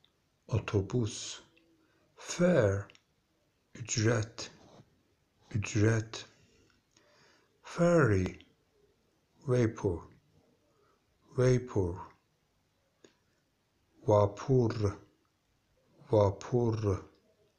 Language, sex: Turkish, male